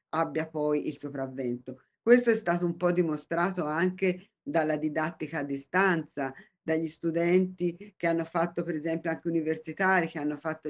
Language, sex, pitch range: Italian, female, 160-205 Hz